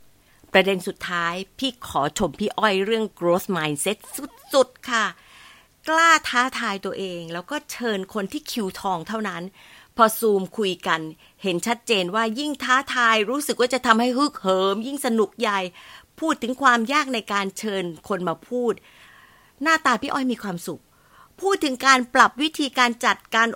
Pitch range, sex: 195-270 Hz, female